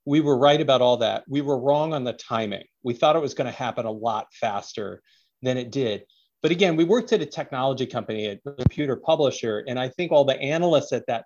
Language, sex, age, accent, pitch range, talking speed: English, male, 40-59, American, 115-150 Hz, 230 wpm